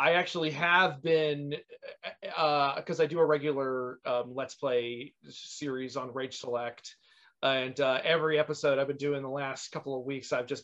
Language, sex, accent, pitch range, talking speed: English, male, American, 135-170 Hz, 175 wpm